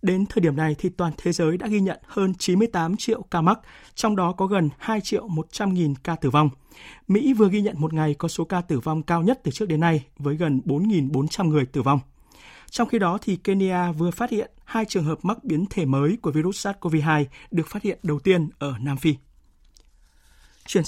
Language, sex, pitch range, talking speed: Vietnamese, male, 155-200 Hz, 220 wpm